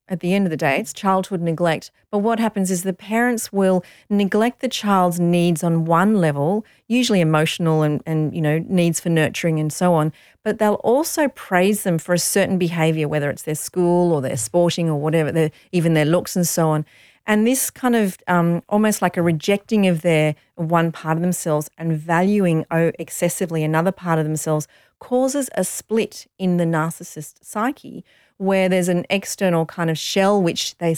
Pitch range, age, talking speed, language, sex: 165-205 Hz, 40-59, 190 wpm, English, female